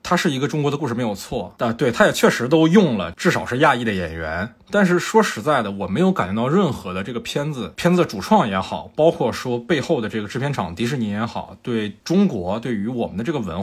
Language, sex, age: Chinese, male, 20-39